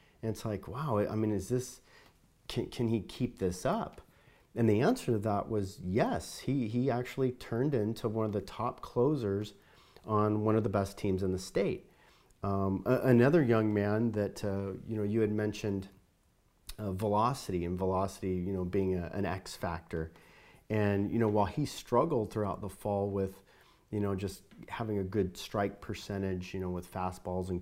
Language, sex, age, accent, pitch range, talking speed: English, male, 40-59, American, 95-115 Hz, 185 wpm